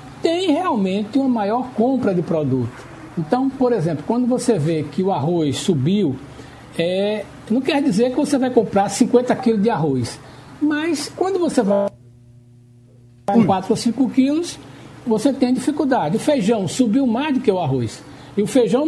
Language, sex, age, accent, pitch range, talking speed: Portuguese, male, 60-79, Brazilian, 180-280 Hz, 165 wpm